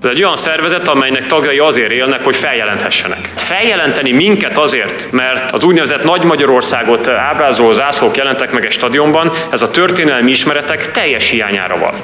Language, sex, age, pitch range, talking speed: Hungarian, male, 30-49, 90-135 Hz, 150 wpm